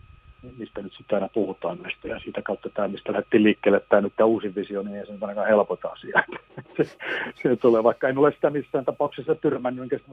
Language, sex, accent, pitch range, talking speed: Finnish, male, native, 105-140 Hz, 205 wpm